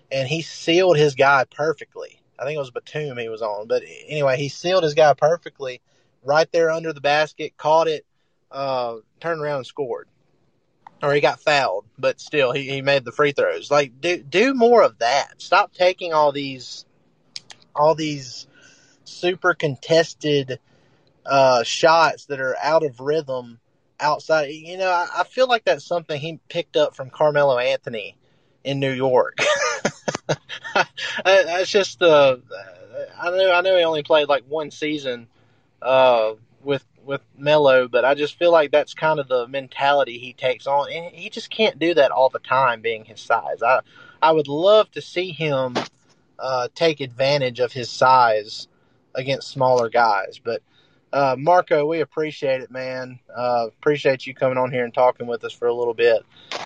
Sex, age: male, 20-39